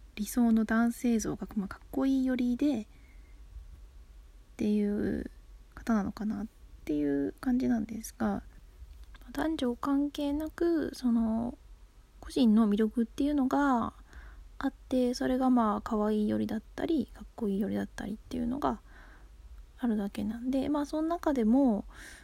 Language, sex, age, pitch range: Japanese, female, 20-39, 210-270 Hz